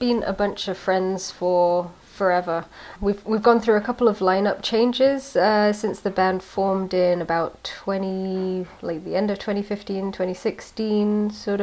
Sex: female